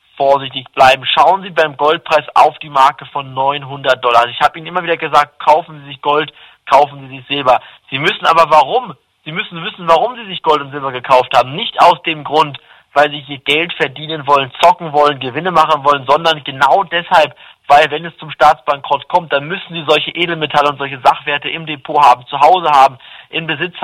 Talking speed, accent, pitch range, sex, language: 205 wpm, German, 140-160 Hz, male, German